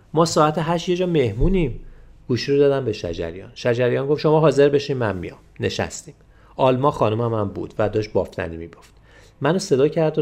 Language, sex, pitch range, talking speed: Persian, male, 105-145 Hz, 175 wpm